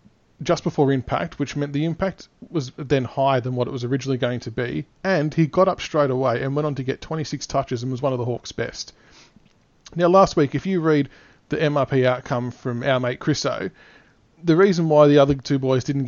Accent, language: Australian, English